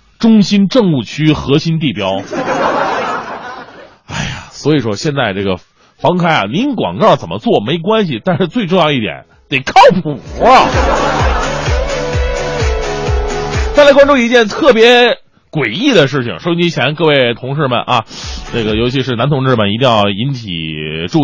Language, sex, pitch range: Chinese, male, 135-220 Hz